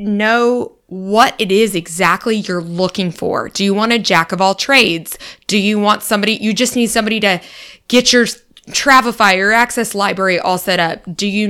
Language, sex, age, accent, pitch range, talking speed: English, female, 20-39, American, 175-230 Hz, 190 wpm